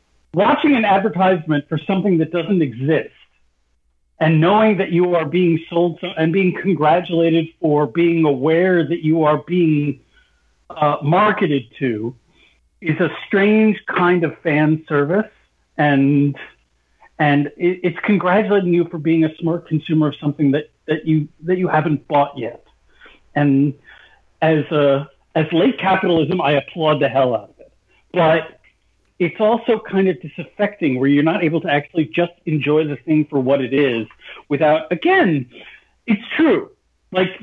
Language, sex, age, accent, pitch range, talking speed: English, male, 50-69, American, 140-180 Hz, 150 wpm